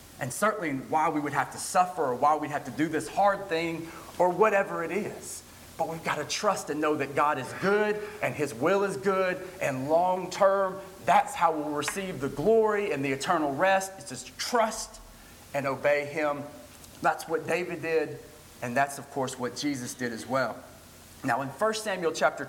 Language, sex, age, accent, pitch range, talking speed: English, male, 40-59, American, 150-210 Hz, 195 wpm